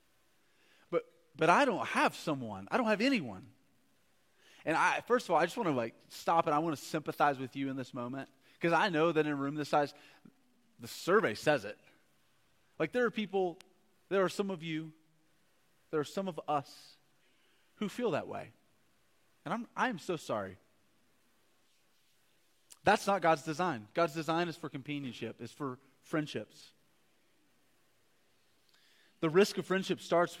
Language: English